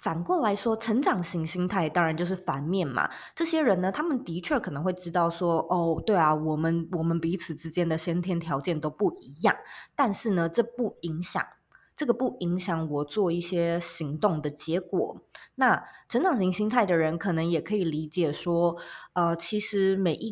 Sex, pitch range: female, 165-215 Hz